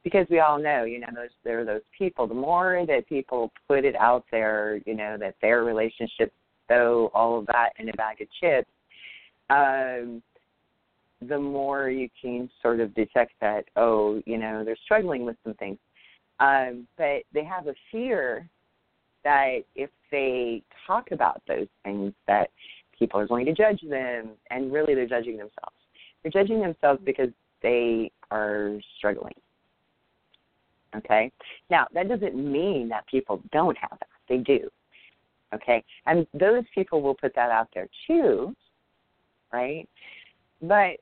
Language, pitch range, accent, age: English, 115-150 Hz, American, 30-49